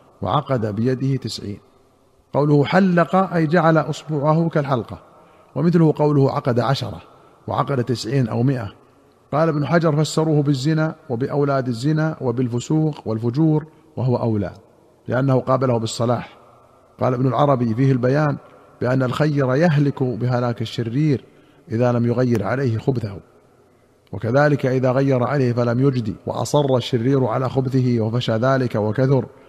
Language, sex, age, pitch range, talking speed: Arabic, male, 50-69, 120-145 Hz, 120 wpm